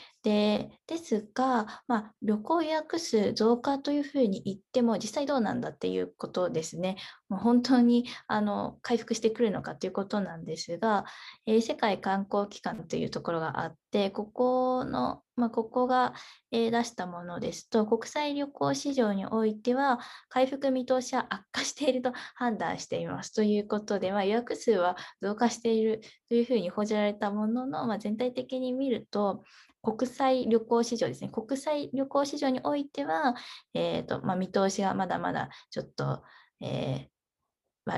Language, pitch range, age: Japanese, 205-255 Hz, 20-39